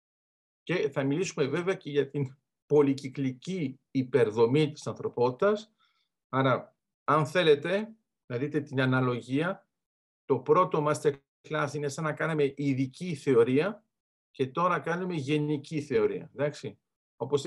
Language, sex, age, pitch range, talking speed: Greek, male, 50-69, 135-170 Hz, 120 wpm